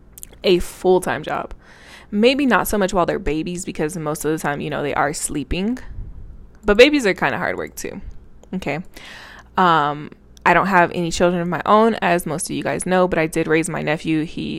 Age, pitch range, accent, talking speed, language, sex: 20-39, 155-200 Hz, American, 210 wpm, English, female